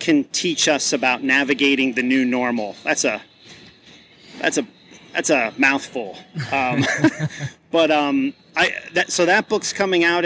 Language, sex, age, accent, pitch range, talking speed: English, male, 40-59, American, 130-160 Hz, 145 wpm